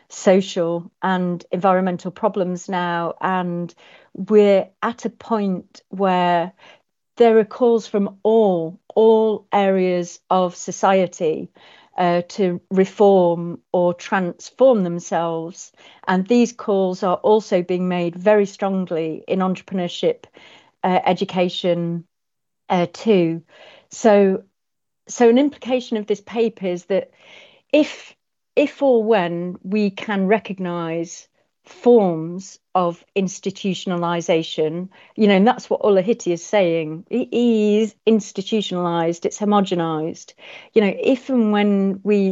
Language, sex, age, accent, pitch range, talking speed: English, female, 50-69, British, 175-215 Hz, 110 wpm